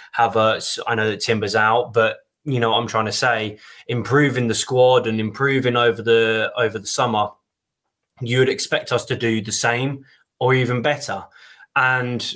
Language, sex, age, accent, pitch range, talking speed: English, male, 20-39, British, 110-130 Hz, 165 wpm